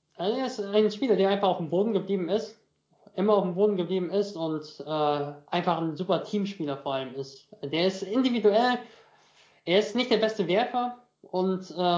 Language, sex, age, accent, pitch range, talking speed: German, male, 20-39, German, 150-190 Hz, 180 wpm